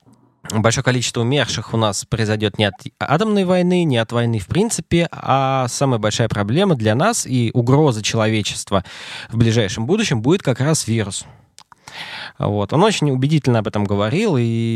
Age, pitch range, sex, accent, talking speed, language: 20-39, 110-150 Hz, male, native, 155 wpm, Russian